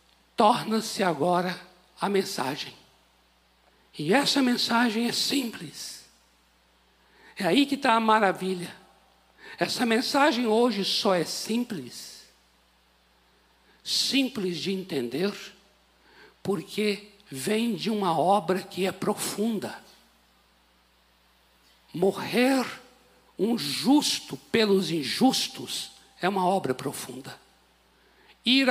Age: 60-79